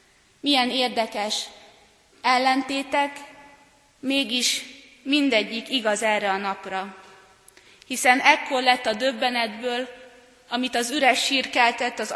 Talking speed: 95 wpm